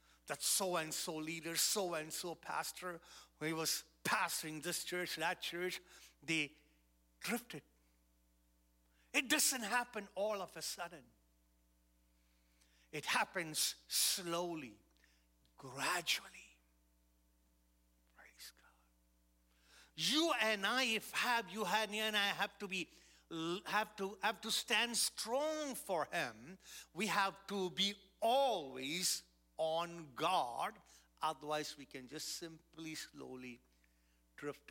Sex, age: male, 50-69